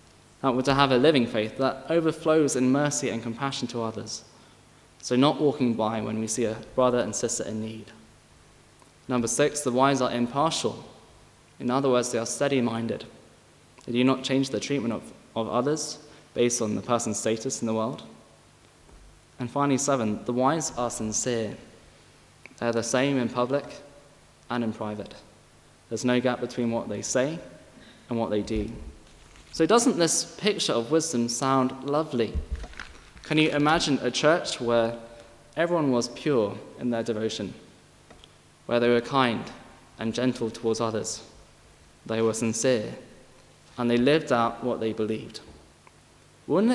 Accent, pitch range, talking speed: British, 110-135 Hz, 160 wpm